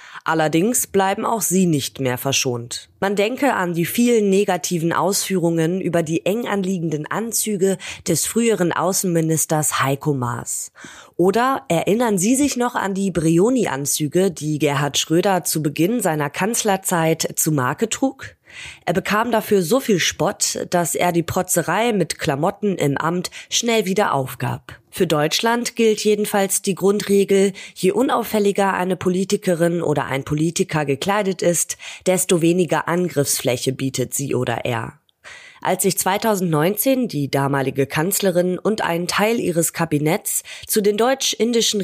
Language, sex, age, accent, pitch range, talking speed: German, female, 20-39, German, 155-205 Hz, 135 wpm